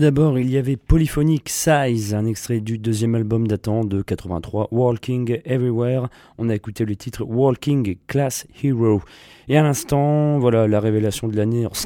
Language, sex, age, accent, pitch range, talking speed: English, male, 30-49, French, 105-130 Hz, 170 wpm